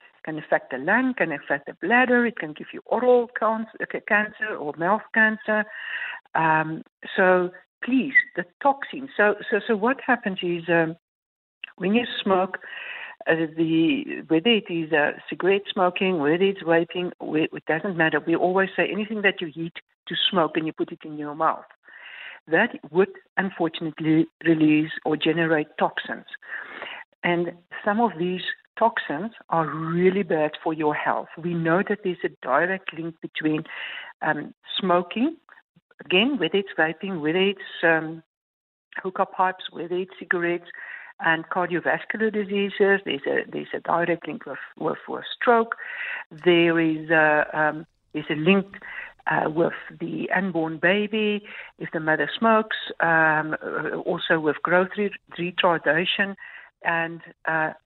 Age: 60-79